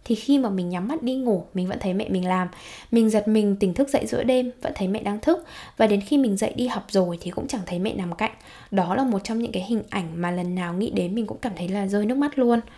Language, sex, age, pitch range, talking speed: Vietnamese, female, 10-29, 190-250 Hz, 300 wpm